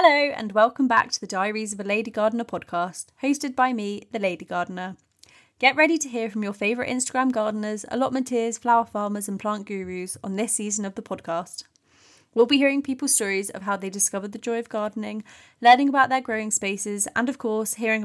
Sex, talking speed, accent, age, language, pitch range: female, 205 wpm, British, 20-39, English, 195-240 Hz